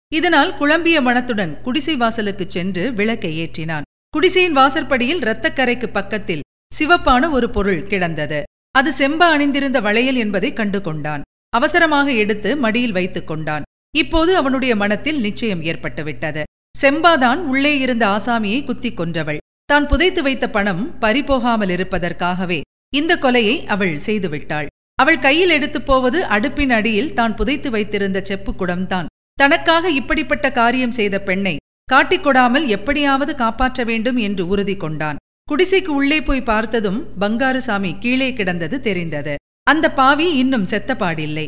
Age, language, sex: 50-69, Tamil, female